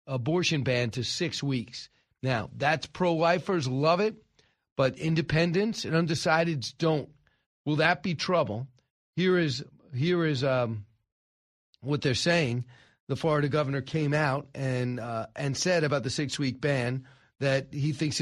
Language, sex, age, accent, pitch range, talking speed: English, male, 40-59, American, 135-165 Hz, 140 wpm